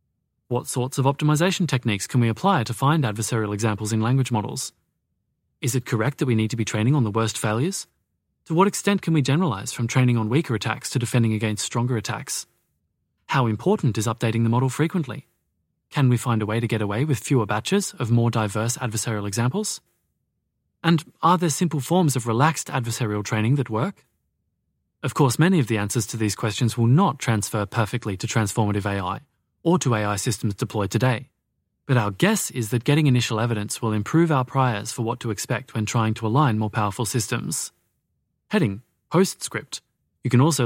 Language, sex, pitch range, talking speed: English, male, 110-140 Hz, 190 wpm